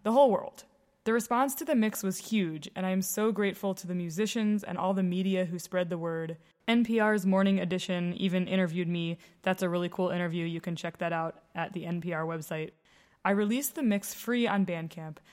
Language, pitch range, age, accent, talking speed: English, 175-210 Hz, 20-39, American, 210 wpm